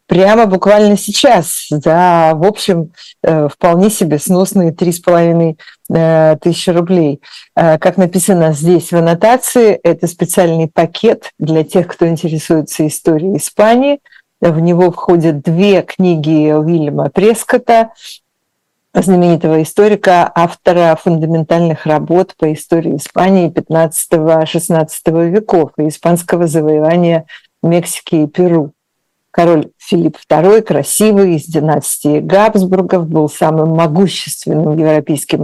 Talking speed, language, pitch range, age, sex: 100 wpm, Russian, 160-190 Hz, 50-69, female